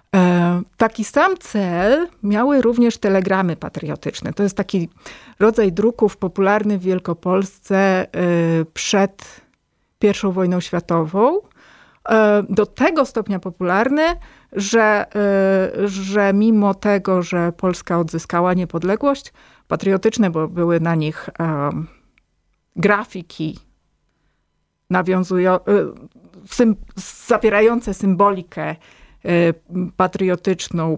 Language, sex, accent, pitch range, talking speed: Polish, female, native, 175-215 Hz, 75 wpm